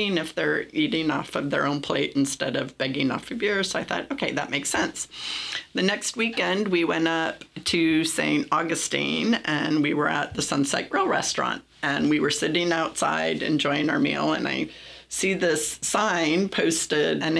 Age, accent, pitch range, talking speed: 40-59, American, 150-185 Hz, 185 wpm